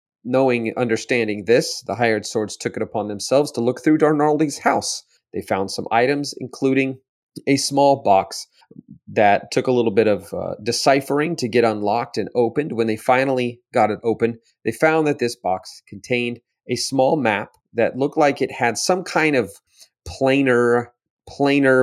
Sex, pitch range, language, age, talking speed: male, 105-130 Hz, English, 30-49, 165 wpm